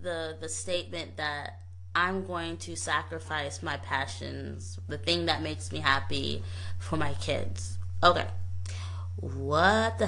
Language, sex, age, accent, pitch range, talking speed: English, female, 20-39, American, 85-95 Hz, 130 wpm